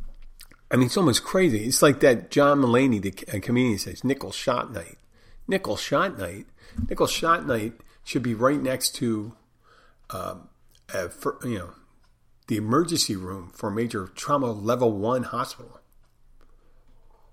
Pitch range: 95-125 Hz